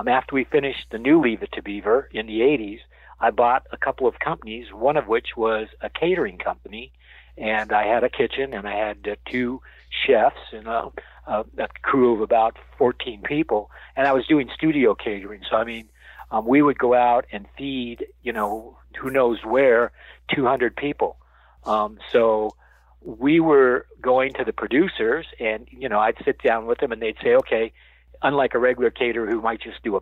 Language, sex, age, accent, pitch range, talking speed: English, male, 50-69, American, 110-145 Hz, 190 wpm